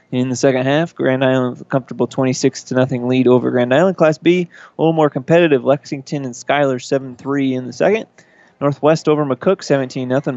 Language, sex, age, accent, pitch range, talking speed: English, male, 20-39, American, 130-150 Hz, 205 wpm